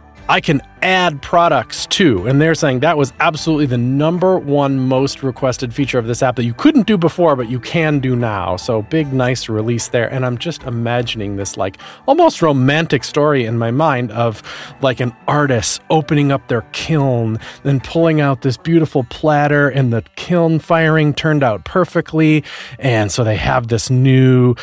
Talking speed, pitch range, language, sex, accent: 180 wpm, 115-150 Hz, English, male, American